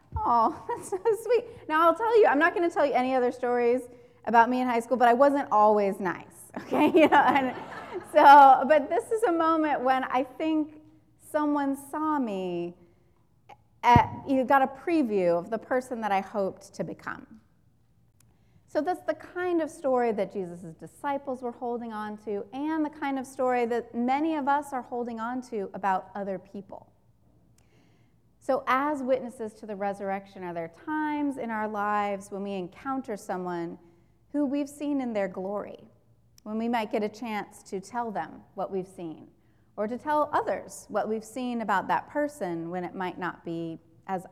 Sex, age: female, 30-49